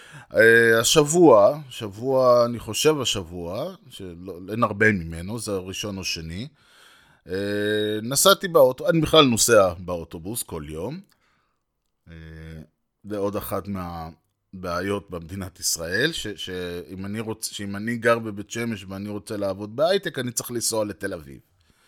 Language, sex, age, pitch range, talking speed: Hebrew, male, 20-39, 95-125 Hz, 120 wpm